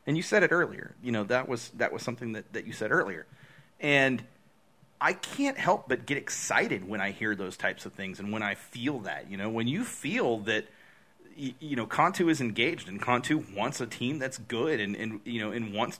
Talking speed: 225 wpm